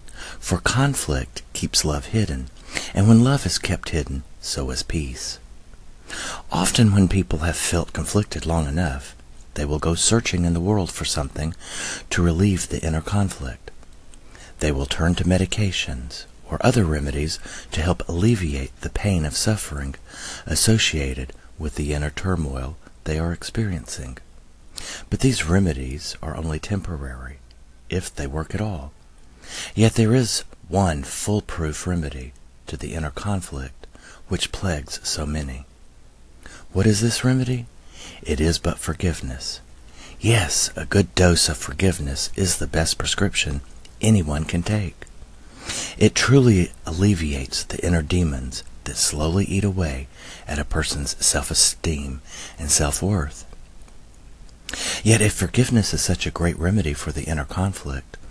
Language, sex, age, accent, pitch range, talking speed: English, male, 40-59, American, 70-95 Hz, 135 wpm